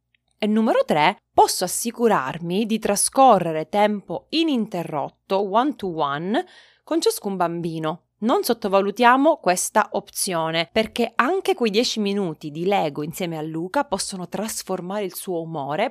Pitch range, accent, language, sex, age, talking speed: 175-240 Hz, native, Italian, female, 30-49, 130 wpm